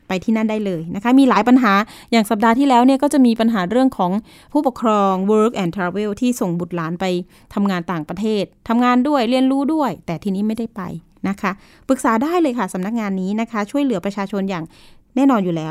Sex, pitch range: female, 200-250 Hz